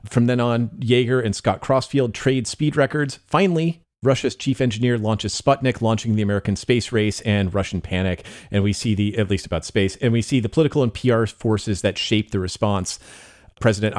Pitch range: 100-125 Hz